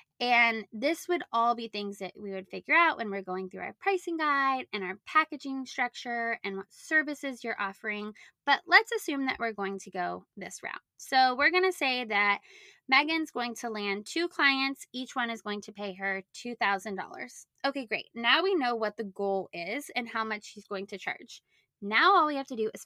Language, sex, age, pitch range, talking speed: English, female, 20-39, 205-295 Hz, 210 wpm